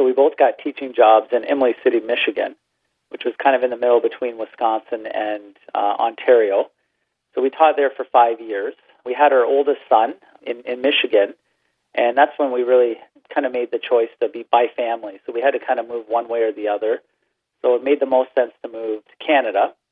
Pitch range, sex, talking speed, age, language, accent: 110-140 Hz, male, 220 wpm, 40-59, English, American